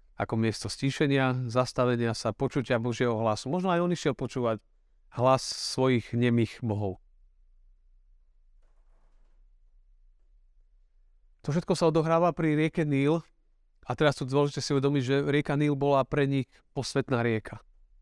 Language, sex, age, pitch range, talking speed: Slovak, male, 40-59, 110-140 Hz, 125 wpm